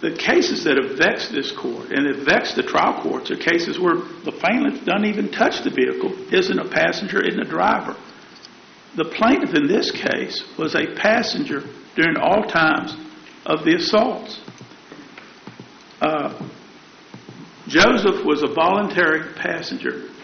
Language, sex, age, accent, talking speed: English, male, 50-69, American, 145 wpm